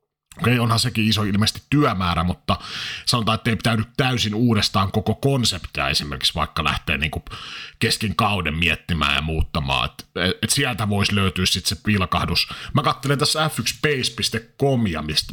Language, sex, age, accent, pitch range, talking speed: Finnish, male, 30-49, native, 95-125 Hz, 150 wpm